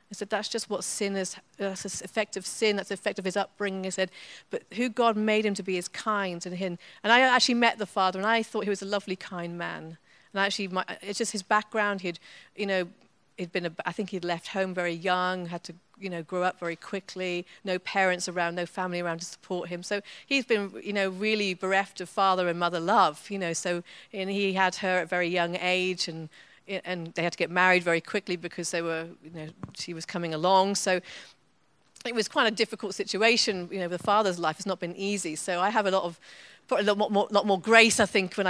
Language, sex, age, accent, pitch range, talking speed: English, female, 40-59, British, 180-220 Hz, 245 wpm